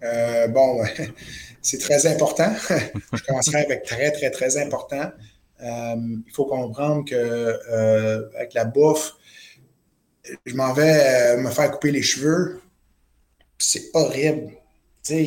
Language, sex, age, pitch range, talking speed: French, male, 20-39, 115-150 Hz, 125 wpm